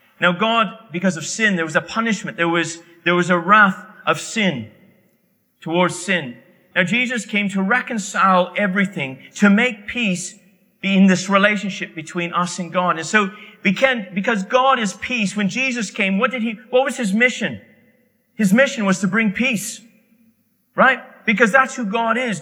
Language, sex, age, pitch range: English, male, 40-59, 185-235 Hz